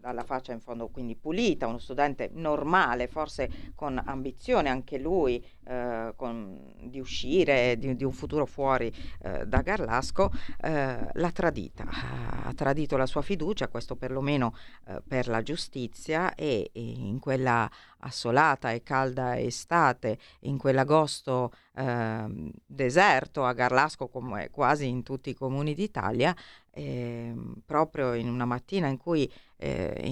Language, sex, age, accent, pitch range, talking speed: Italian, female, 40-59, native, 120-140 Hz, 135 wpm